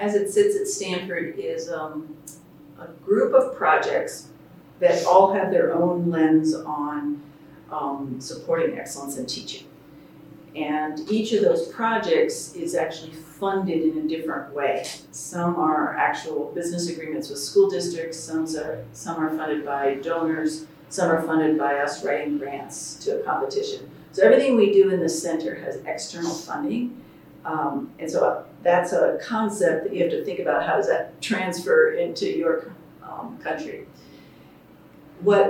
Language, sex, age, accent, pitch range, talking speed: Portuguese, female, 40-59, American, 155-260 Hz, 150 wpm